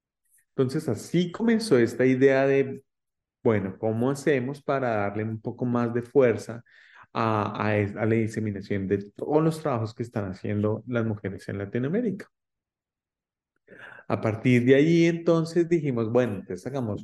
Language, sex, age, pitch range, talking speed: English, male, 30-49, 110-135 Hz, 150 wpm